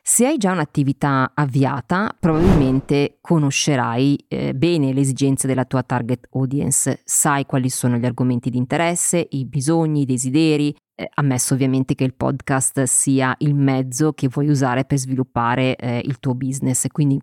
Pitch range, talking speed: 130-155 Hz, 160 wpm